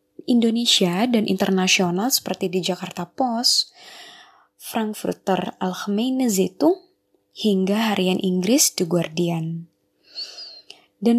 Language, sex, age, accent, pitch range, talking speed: Indonesian, female, 20-39, native, 180-235 Hz, 85 wpm